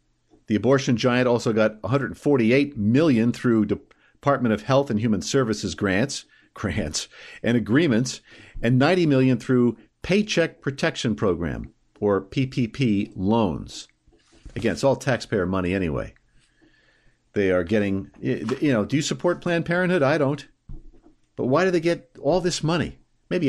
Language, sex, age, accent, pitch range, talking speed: English, male, 50-69, American, 110-140 Hz, 140 wpm